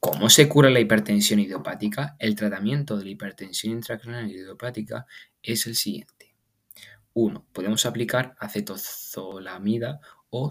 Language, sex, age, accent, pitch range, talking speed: Spanish, male, 20-39, Spanish, 100-120 Hz, 120 wpm